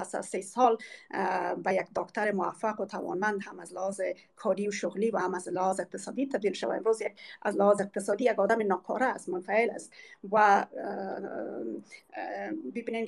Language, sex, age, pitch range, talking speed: Persian, female, 30-49, 190-245 Hz, 150 wpm